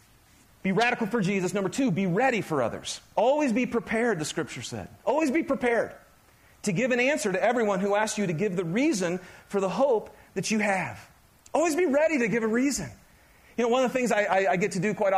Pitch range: 195-255 Hz